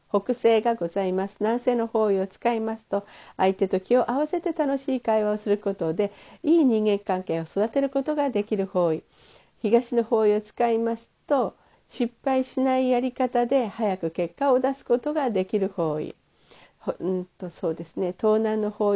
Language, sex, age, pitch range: Japanese, female, 50-69, 190-255 Hz